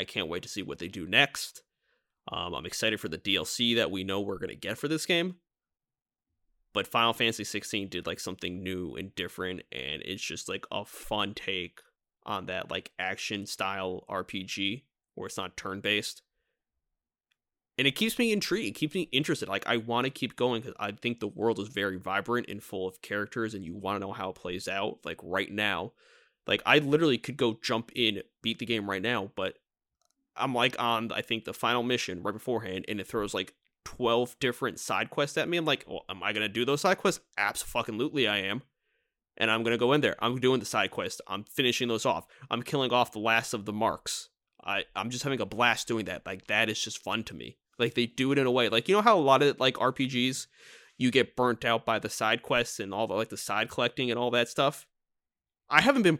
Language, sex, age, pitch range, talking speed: English, male, 20-39, 100-135 Hz, 230 wpm